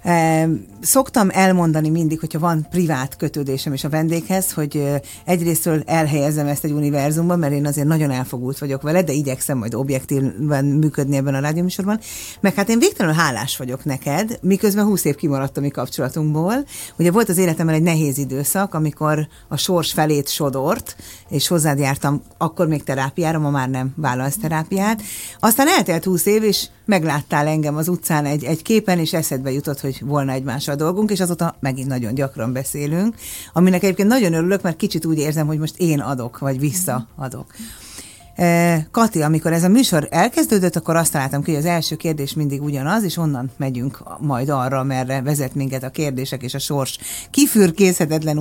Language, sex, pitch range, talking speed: Hungarian, female, 135-175 Hz, 165 wpm